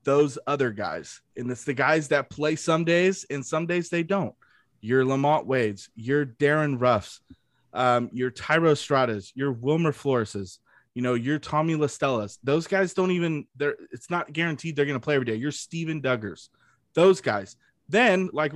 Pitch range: 130-175 Hz